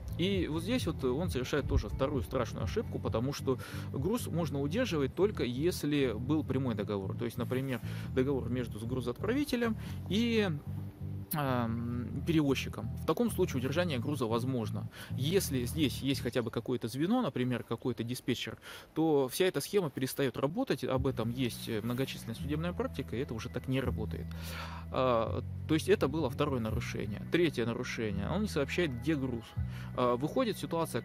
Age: 20-39